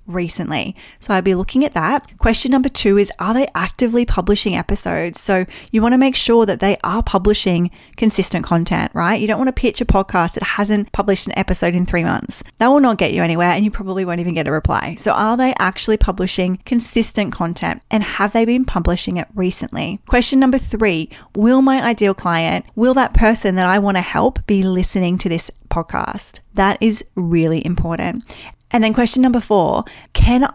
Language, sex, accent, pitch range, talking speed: English, female, Australian, 185-230 Hz, 200 wpm